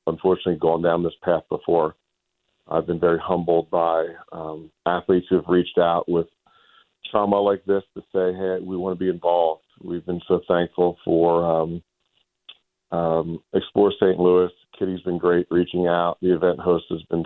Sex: male